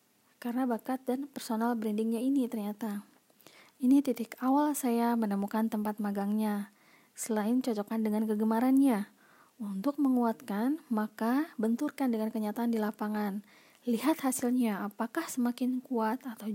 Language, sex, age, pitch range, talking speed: Indonesian, female, 20-39, 215-250 Hz, 115 wpm